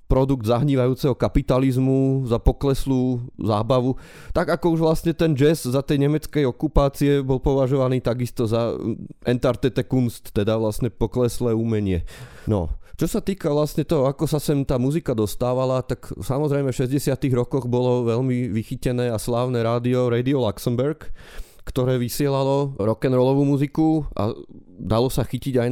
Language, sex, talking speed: Slovak, male, 140 wpm